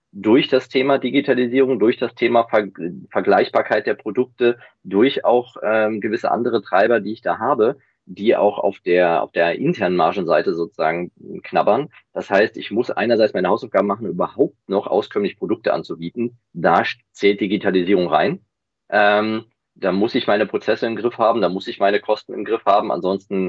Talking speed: 170 wpm